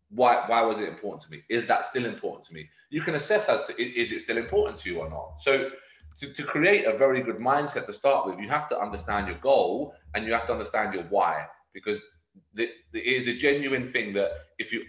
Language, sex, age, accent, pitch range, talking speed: English, male, 30-49, British, 105-140 Hz, 240 wpm